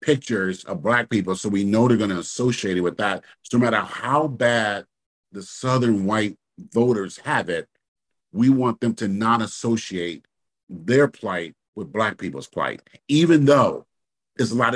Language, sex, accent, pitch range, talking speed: English, male, American, 95-120 Hz, 170 wpm